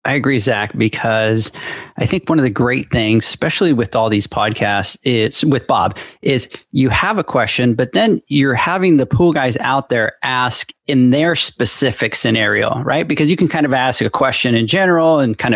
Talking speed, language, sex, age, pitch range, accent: 195 wpm, English, male, 40-59, 115-140 Hz, American